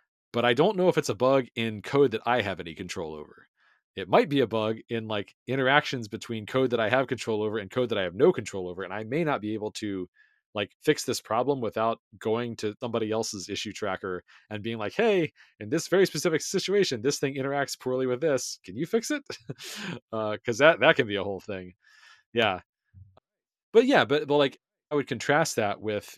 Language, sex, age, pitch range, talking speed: English, male, 40-59, 100-130 Hz, 220 wpm